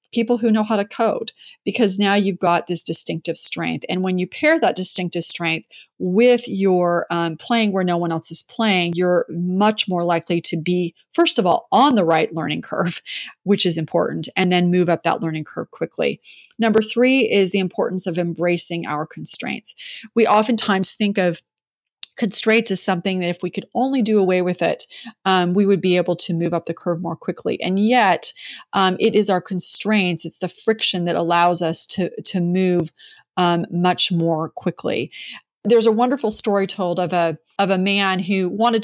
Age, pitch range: 30-49, 175-210 Hz